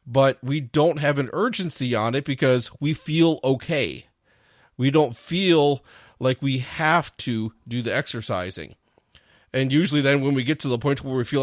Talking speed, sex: 180 wpm, male